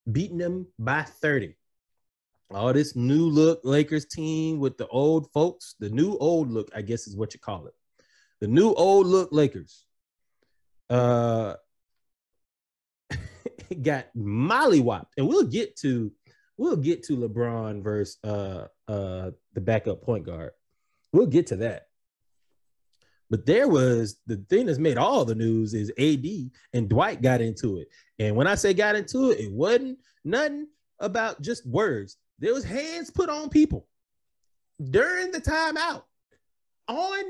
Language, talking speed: English, 150 wpm